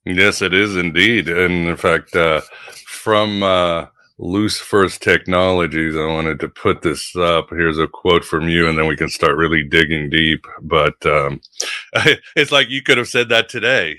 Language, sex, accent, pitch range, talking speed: English, male, American, 90-110 Hz, 180 wpm